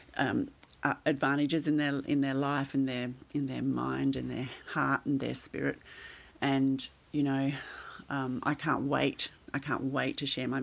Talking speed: 180 wpm